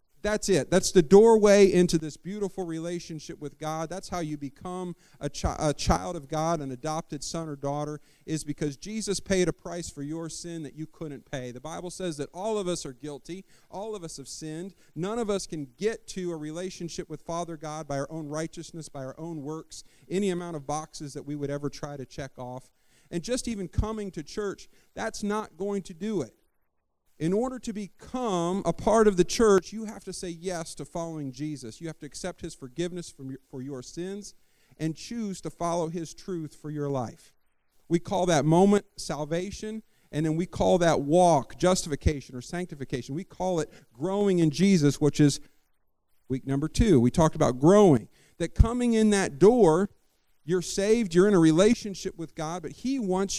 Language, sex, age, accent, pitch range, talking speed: English, male, 40-59, American, 145-190 Hz, 195 wpm